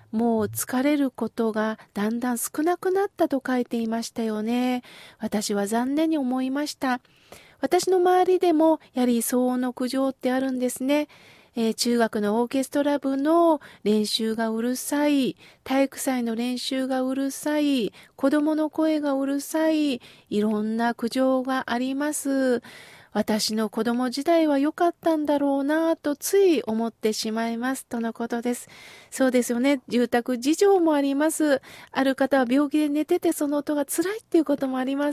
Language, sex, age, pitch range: Japanese, female, 40-59, 240-310 Hz